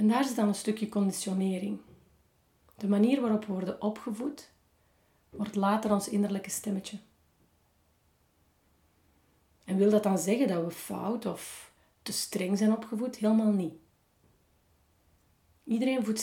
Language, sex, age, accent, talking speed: Dutch, female, 30-49, Belgian, 130 wpm